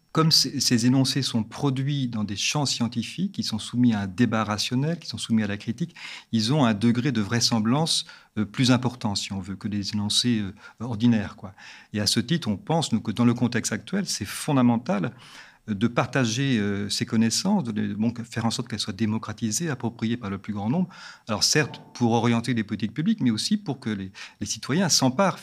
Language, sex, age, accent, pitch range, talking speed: French, male, 40-59, French, 105-135 Hz, 205 wpm